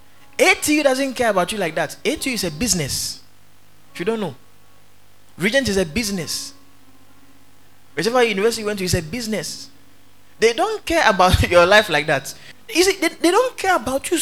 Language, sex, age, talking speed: English, male, 30-49, 180 wpm